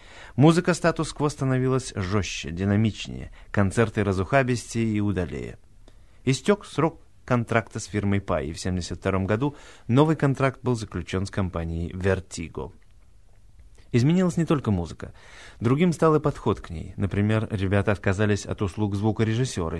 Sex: male